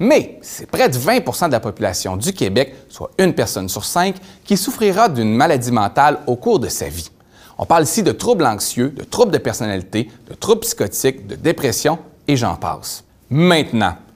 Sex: male